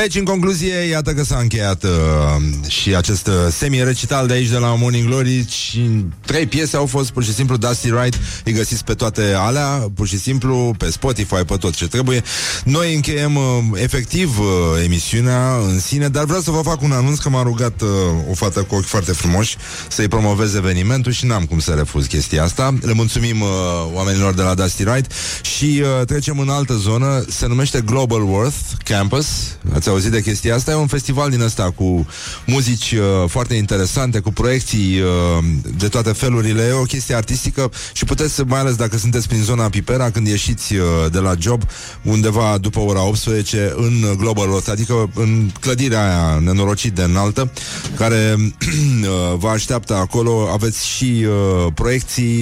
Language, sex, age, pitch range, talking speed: Romanian, male, 30-49, 100-125 Hz, 180 wpm